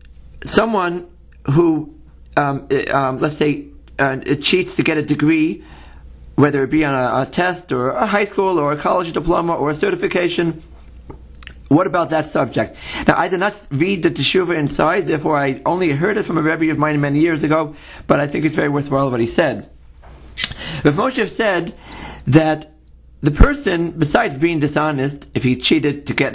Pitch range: 135-175 Hz